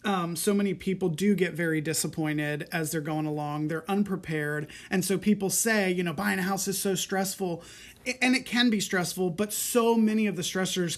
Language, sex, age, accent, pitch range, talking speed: English, male, 30-49, American, 165-200 Hz, 200 wpm